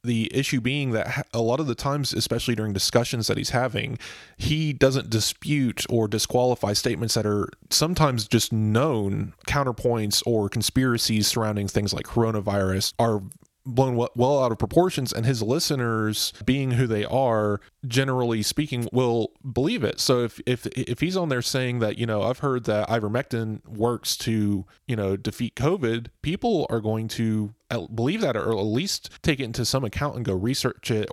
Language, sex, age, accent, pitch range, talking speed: English, male, 20-39, American, 105-130 Hz, 175 wpm